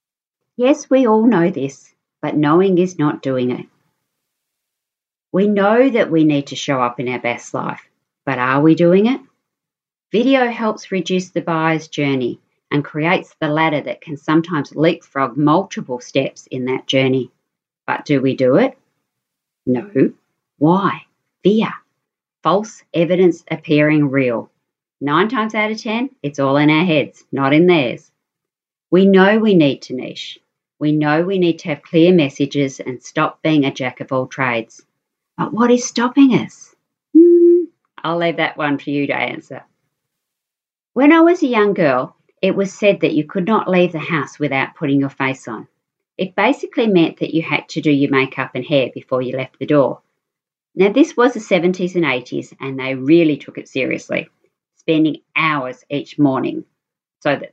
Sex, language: female, English